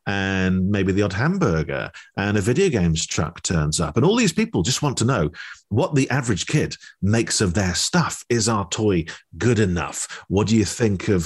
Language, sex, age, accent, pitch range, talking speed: English, male, 40-59, British, 95-140 Hz, 205 wpm